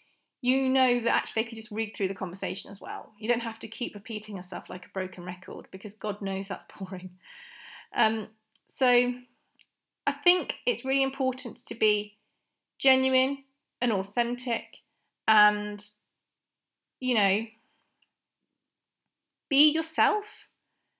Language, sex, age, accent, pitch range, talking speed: English, female, 30-49, British, 205-260 Hz, 130 wpm